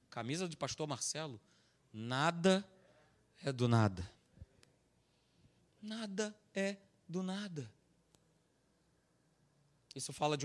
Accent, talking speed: Brazilian, 85 wpm